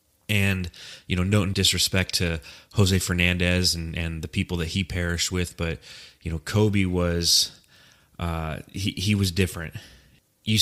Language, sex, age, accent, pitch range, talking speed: English, male, 30-49, American, 85-100 Hz, 160 wpm